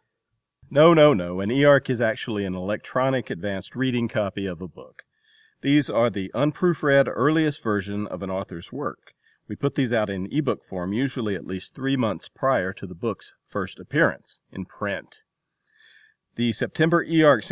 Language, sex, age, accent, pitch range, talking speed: English, male, 40-59, American, 95-130 Hz, 170 wpm